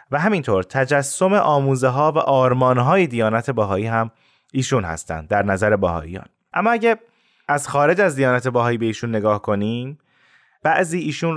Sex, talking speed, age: male, 155 wpm, 20-39